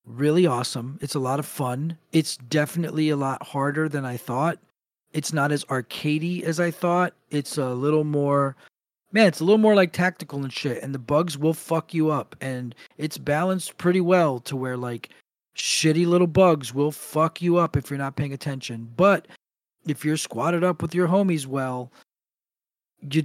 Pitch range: 135-170 Hz